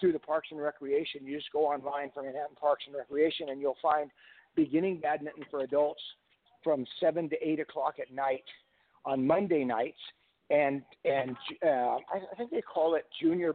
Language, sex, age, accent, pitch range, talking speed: English, male, 50-69, American, 140-175 Hz, 175 wpm